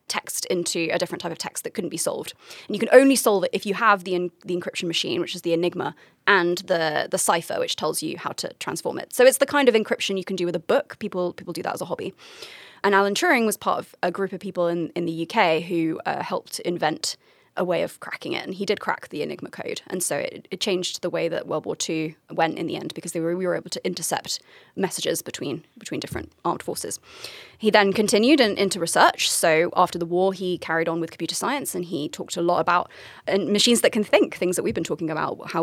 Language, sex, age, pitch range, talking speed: English, female, 20-39, 175-215 Hz, 255 wpm